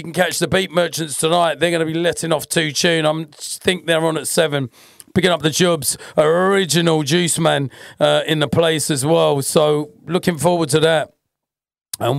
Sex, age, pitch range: male, 40-59, 150-185 Hz